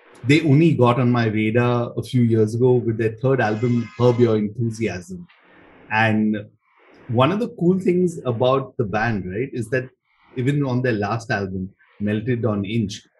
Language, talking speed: English, 170 wpm